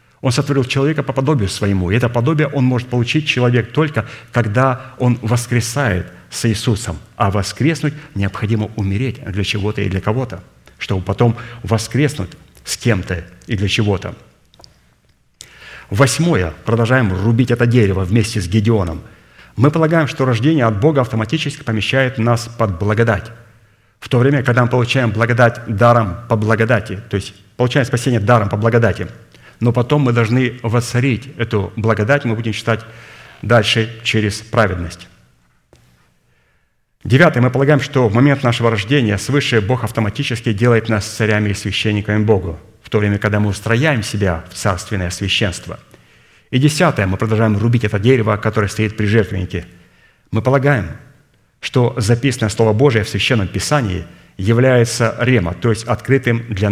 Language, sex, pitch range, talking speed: Russian, male, 105-125 Hz, 145 wpm